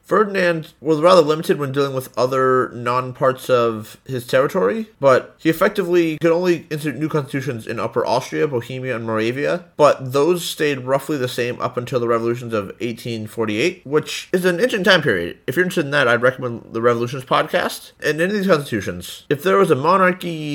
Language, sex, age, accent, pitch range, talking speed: English, male, 30-49, American, 120-160 Hz, 190 wpm